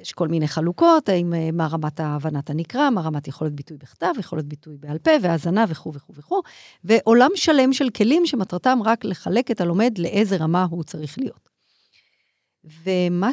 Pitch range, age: 165-240 Hz, 50-69